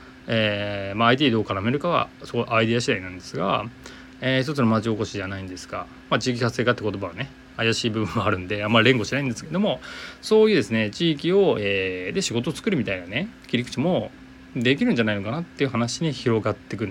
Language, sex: Japanese, male